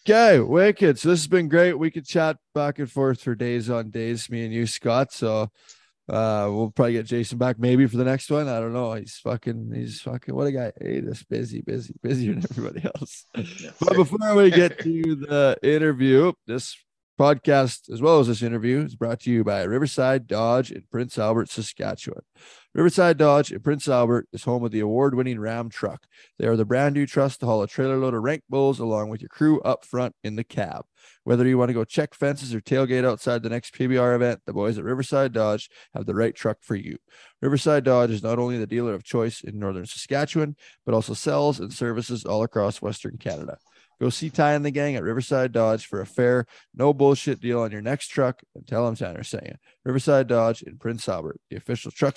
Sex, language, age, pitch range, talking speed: male, English, 20-39, 115-145 Hz, 220 wpm